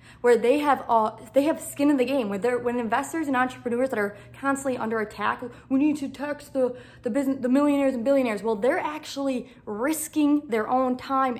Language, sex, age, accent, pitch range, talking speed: English, female, 20-39, American, 230-275 Hz, 210 wpm